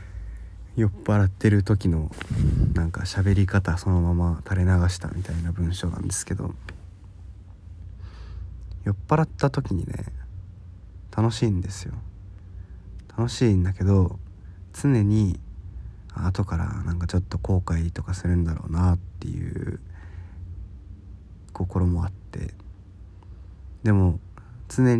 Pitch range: 90-100 Hz